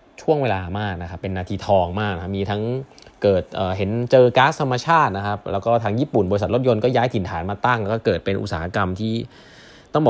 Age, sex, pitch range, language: 20-39, male, 100-125 Hz, Thai